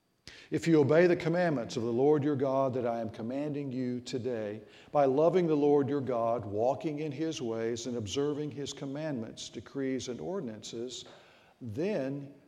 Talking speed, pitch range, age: 165 wpm, 120-150 Hz, 60-79